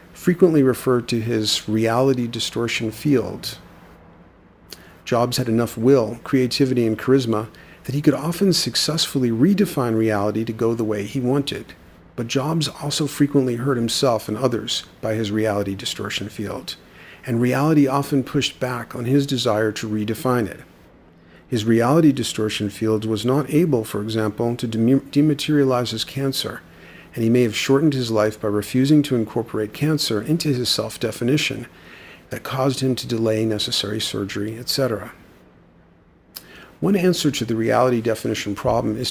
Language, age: English, 40-59